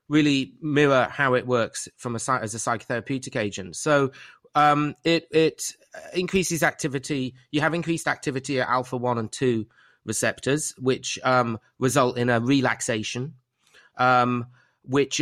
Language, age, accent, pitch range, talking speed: English, 30-49, British, 115-145 Hz, 140 wpm